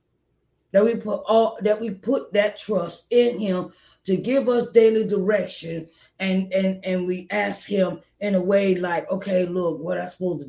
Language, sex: English, female